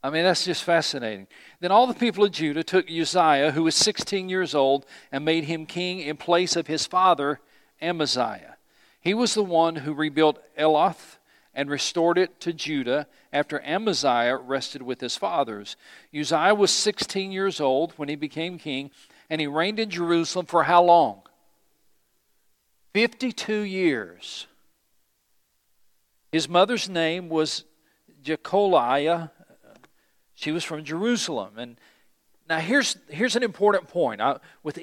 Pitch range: 145-185 Hz